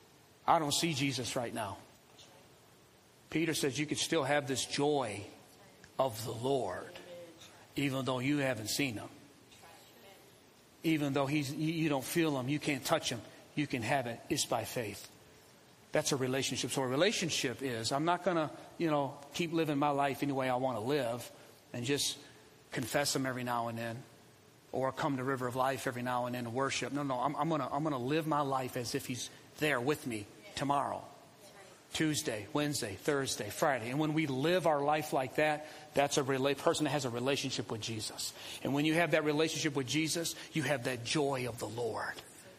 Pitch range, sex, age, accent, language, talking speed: 125-150 Hz, male, 40-59, American, English, 195 wpm